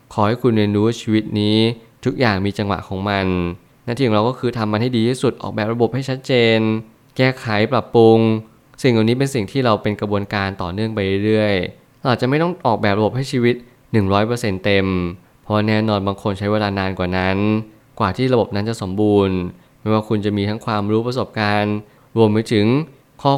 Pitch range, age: 100-120 Hz, 20-39